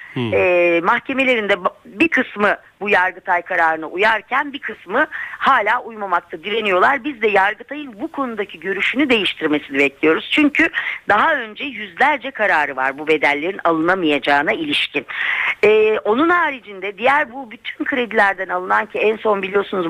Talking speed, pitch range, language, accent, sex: 130 wpm, 185-285 Hz, Turkish, native, female